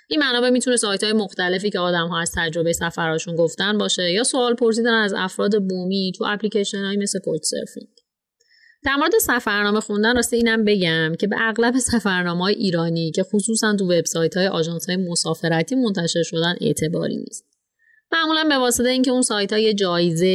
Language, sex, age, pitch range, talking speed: Persian, female, 30-49, 175-230 Hz, 170 wpm